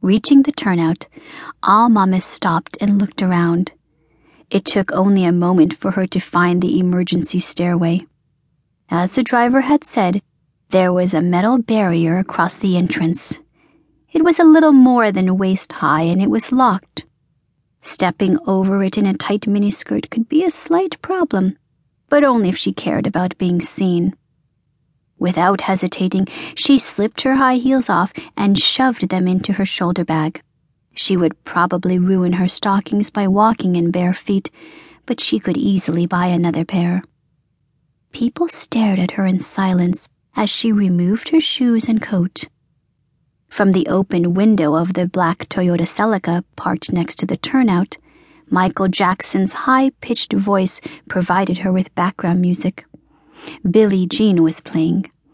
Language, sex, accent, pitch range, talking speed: English, female, American, 170-210 Hz, 150 wpm